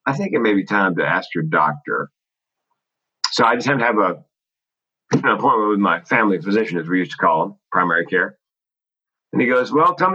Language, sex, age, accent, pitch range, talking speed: English, male, 40-59, American, 100-125 Hz, 215 wpm